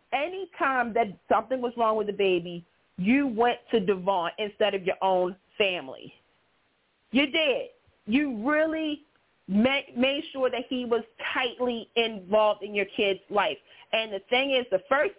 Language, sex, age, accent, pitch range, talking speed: English, female, 30-49, American, 205-270 Hz, 150 wpm